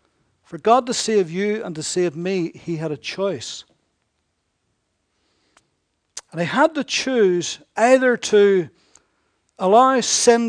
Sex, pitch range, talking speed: male, 190-245 Hz, 125 wpm